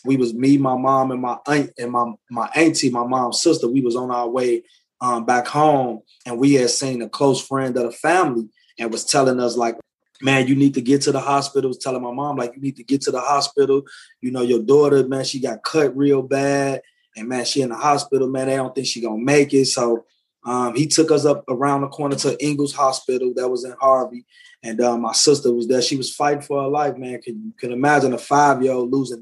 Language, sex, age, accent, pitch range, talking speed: English, male, 20-39, American, 125-140 Hz, 250 wpm